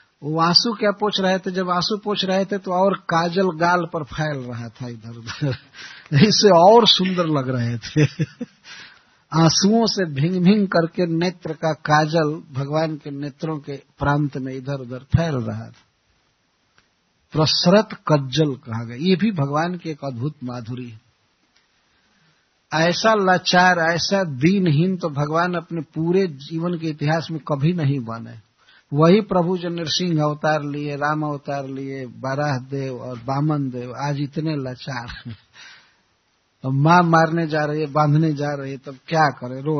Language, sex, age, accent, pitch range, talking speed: Hindi, male, 60-79, native, 135-170 Hz, 155 wpm